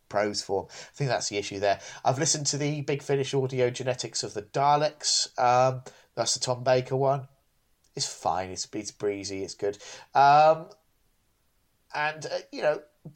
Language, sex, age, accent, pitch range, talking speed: English, male, 30-49, British, 110-145 Hz, 175 wpm